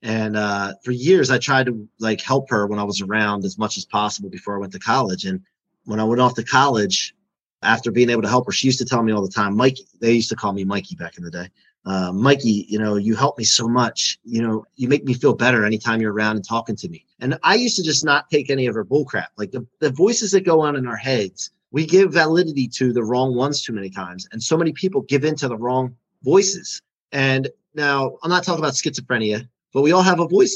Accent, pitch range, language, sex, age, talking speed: American, 110-140 Hz, English, male, 30-49, 260 wpm